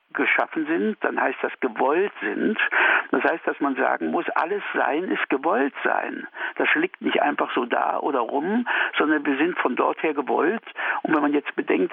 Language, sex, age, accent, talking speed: German, male, 60-79, German, 190 wpm